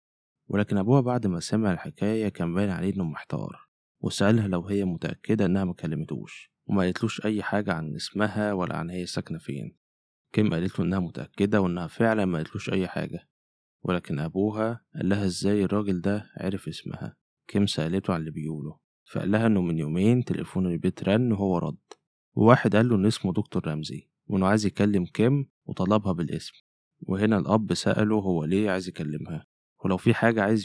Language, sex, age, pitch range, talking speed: Arabic, male, 20-39, 90-110 Hz, 170 wpm